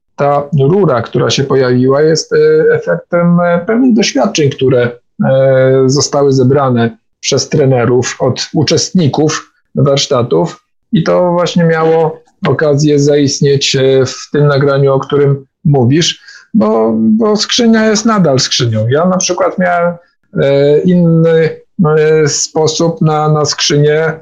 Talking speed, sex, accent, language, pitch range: 110 wpm, male, native, Polish, 135-170 Hz